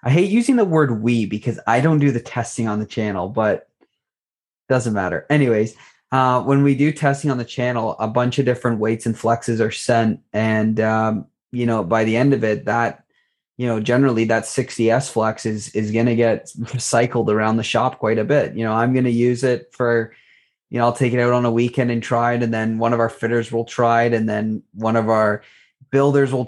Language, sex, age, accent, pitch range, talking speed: English, male, 20-39, American, 115-140 Hz, 230 wpm